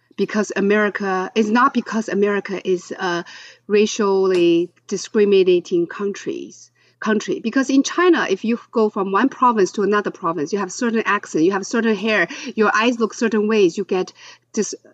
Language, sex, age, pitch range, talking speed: English, female, 40-59, 205-295 Hz, 160 wpm